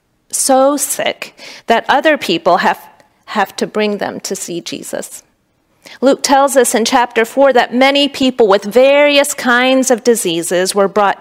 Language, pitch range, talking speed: English, 200-260 Hz, 155 wpm